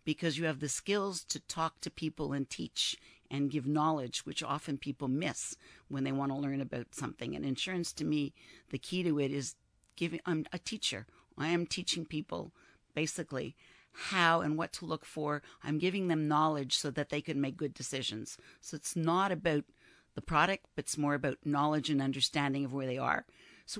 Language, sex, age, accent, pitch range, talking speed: English, female, 50-69, American, 140-165 Hz, 195 wpm